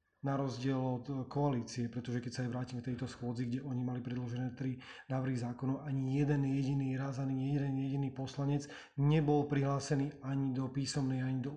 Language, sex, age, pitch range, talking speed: Slovak, male, 30-49, 130-140 Hz, 175 wpm